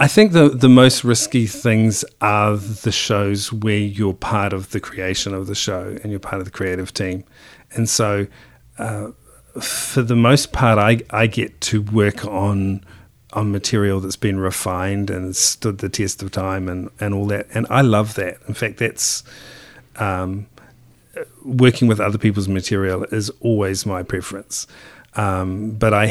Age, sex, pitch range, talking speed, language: 40-59, male, 95-110 Hz, 170 wpm, English